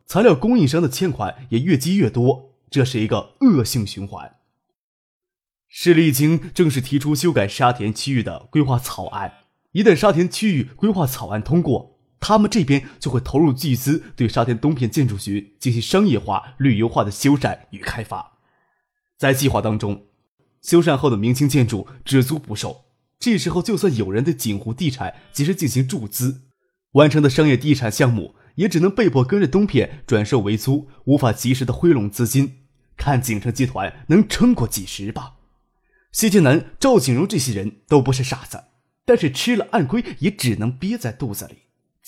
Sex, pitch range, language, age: male, 120-165 Hz, Chinese, 20-39